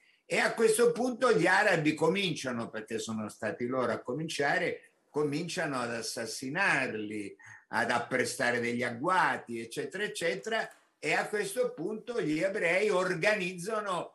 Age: 50-69